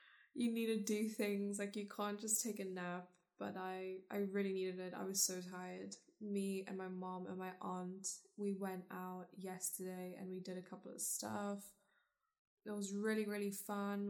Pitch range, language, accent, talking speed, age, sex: 190-220 Hz, English, British, 190 wpm, 10-29, female